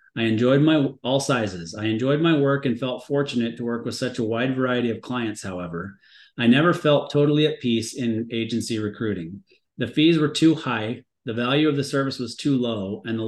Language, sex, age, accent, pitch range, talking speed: English, male, 30-49, American, 110-130 Hz, 210 wpm